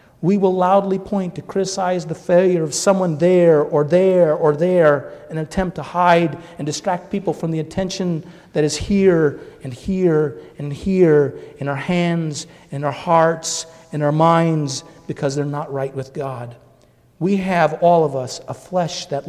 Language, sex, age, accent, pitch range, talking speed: English, male, 40-59, American, 135-165 Hz, 170 wpm